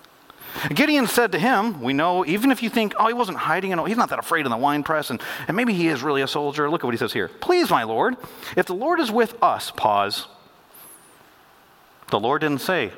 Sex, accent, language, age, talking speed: male, American, English, 40-59, 240 wpm